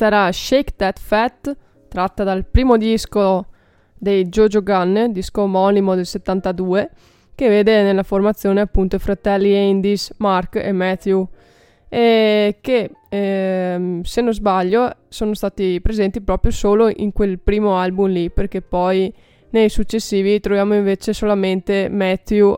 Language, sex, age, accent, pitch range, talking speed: Italian, female, 20-39, native, 185-215 Hz, 130 wpm